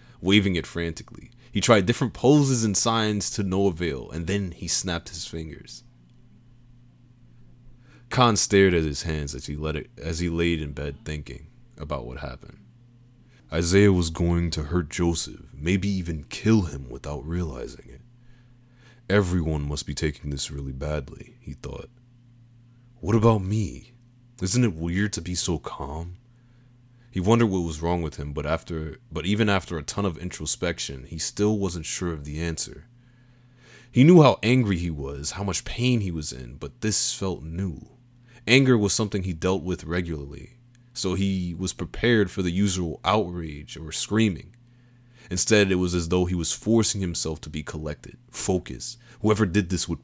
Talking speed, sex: 170 wpm, male